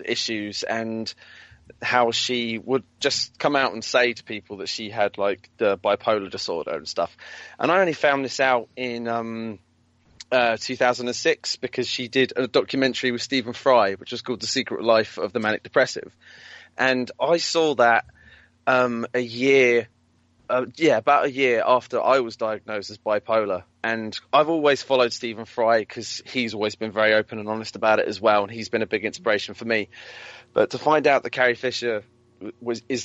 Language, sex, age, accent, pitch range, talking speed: English, male, 20-39, British, 110-125 Hz, 185 wpm